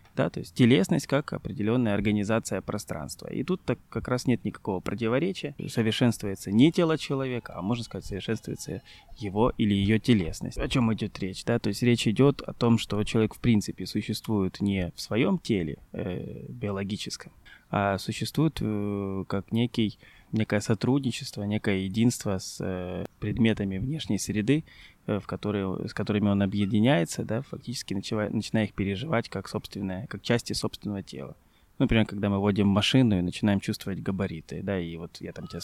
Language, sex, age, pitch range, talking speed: Russian, male, 20-39, 100-120 Hz, 160 wpm